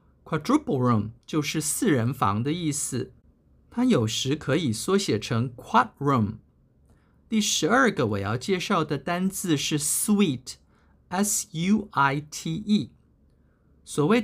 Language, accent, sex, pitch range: Chinese, native, male, 120-195 Hz